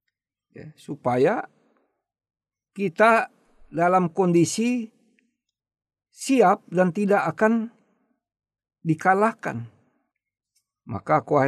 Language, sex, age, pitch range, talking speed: Indonesian, male, 60-79, 140-195 Hz, 50 wpm